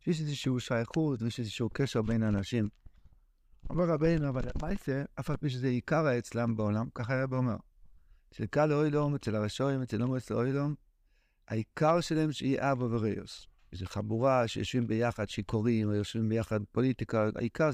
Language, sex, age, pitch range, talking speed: Hebrew, male, 60-79, 120-160 Hz, 150 wpm